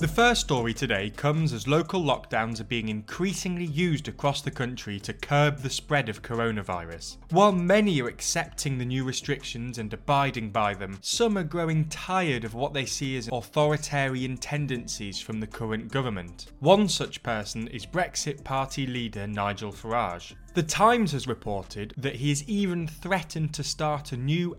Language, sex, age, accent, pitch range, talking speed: English, male, 20-39, British, 115-165 Hz, 170 wpm